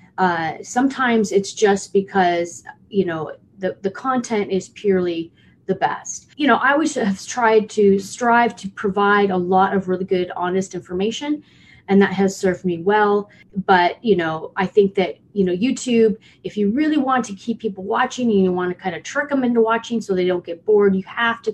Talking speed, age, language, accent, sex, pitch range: 200 wpm, 30-49, English, American, female, 185-225 Hz